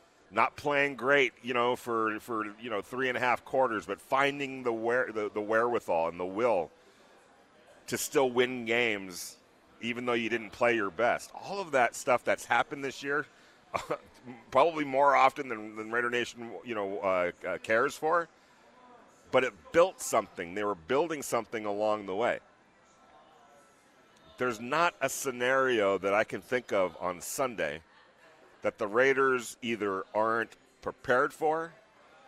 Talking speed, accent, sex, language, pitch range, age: 160 wpm, American, male, English, 110-130 Hz, 40-59